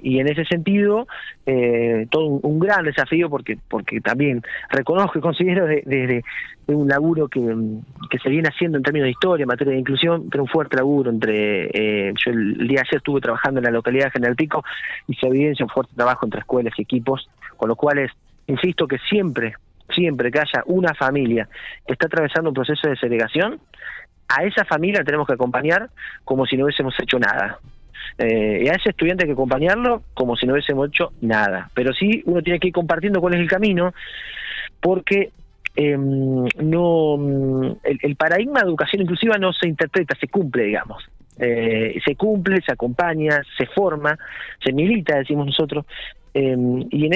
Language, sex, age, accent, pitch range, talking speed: Spanish, male, 30-49, Argentinian, 130-175 Hz, 190 wpm